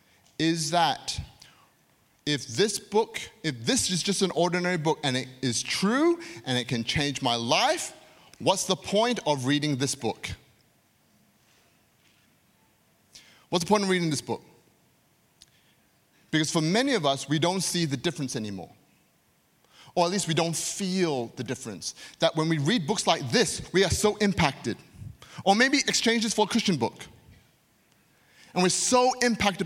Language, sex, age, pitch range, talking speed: English, male, 30-49, 145-200 Hz, 155 wpm